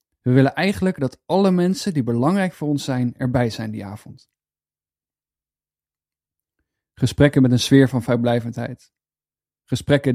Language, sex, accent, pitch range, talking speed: Dutch, male, Dutch, 120-135 Hz, 130 wpm